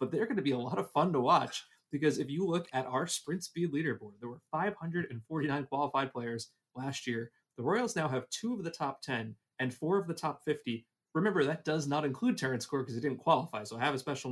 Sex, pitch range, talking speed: male, 120-150 Hz, 245 wpm